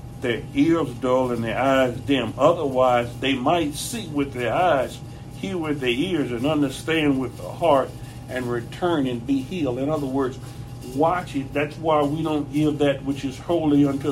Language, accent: English, American